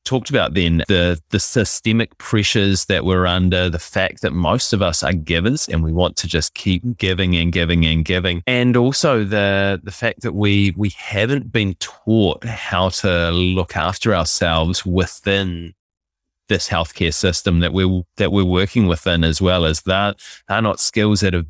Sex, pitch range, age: male, 85-105 Hz, 20-39